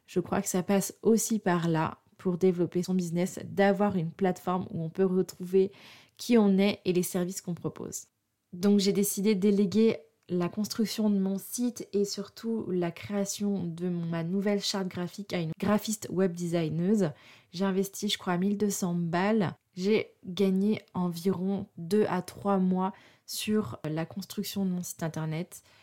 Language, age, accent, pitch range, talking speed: French, 20-39, French, 175-205 Hz, 165 wpm